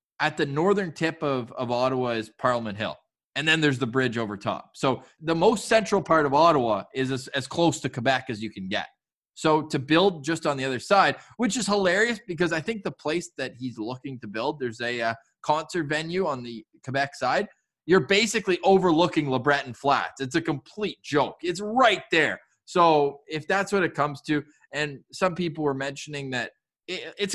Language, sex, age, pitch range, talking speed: English, male, 20-39, 130-180 Hz, 200 wpm